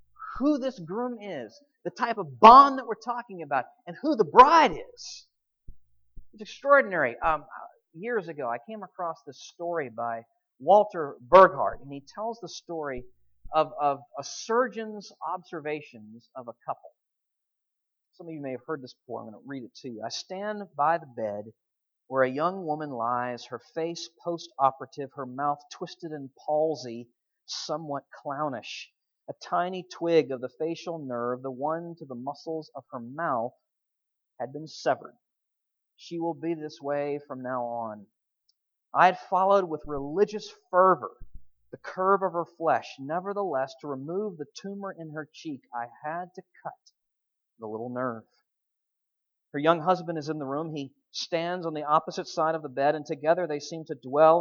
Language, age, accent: English, 40-59, American